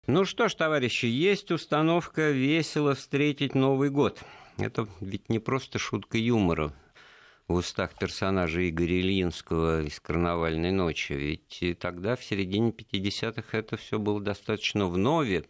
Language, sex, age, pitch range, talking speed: Russian, male, 50-69, 80-115 Hz, 135 wpm